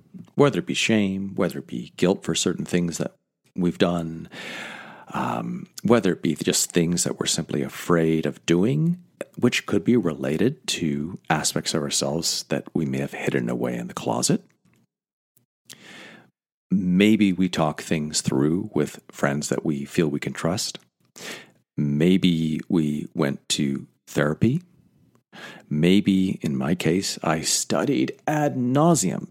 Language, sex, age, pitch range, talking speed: English, male, 40-59, 75-110 Hz, 140 wpm